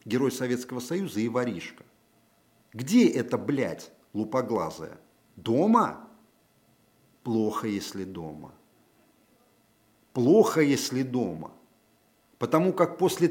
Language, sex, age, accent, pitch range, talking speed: Russian, male, 50-69, native, 110-140 Hz, 85 wpm